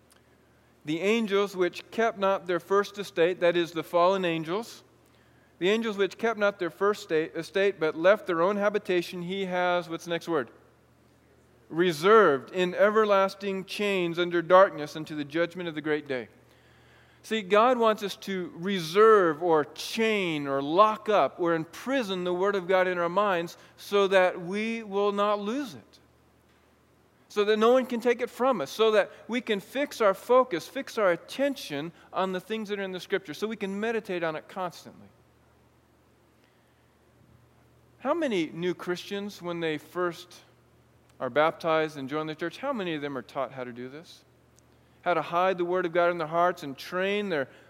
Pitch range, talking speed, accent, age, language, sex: 165-205 Hz, 180 wpm, American, 40-59, English, male